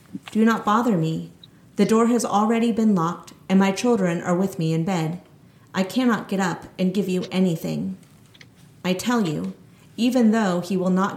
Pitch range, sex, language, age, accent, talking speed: 170-205 Hz, female, English, 40-59, American, 185 wpm